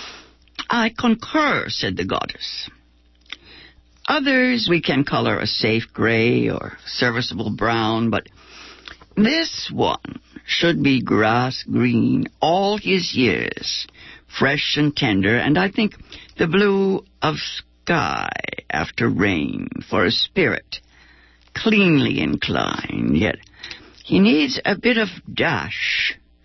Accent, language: American, English